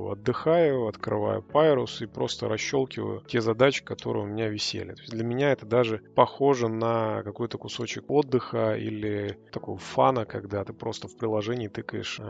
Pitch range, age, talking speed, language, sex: 105-120 Hz, 20-39, 145 wpm, Russian, male